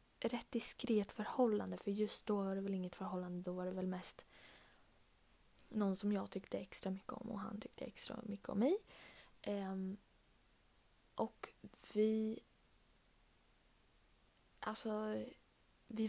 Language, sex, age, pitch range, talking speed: Swedish, female, 20-39, 190-220 Hz, 125 wpm